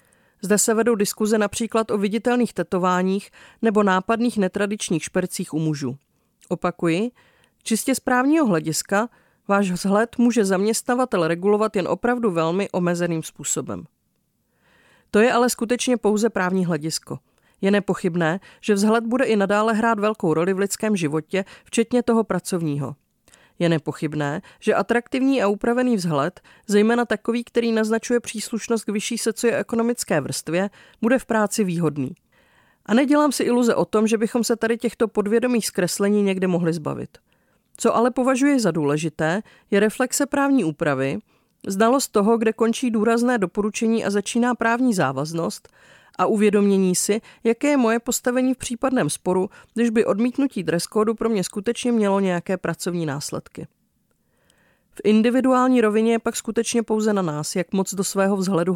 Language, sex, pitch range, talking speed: Czech, female, 185-235 Hz, 145 wpm